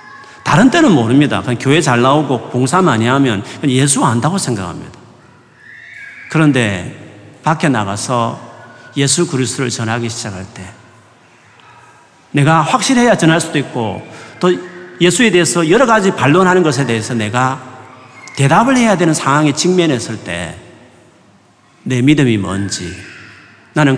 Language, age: Korean, 40-59